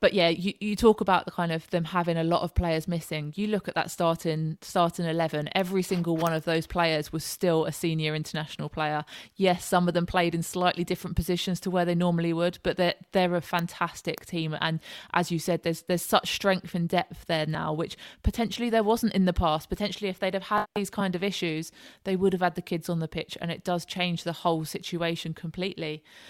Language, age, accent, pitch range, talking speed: English, 20-39, British, 160-180 Hz, 230 wpm